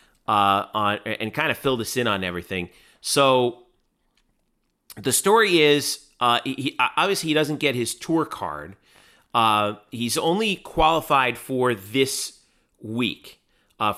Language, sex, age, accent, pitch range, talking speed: English, male, 40-59, American, 105-145 Hz, 135 wpm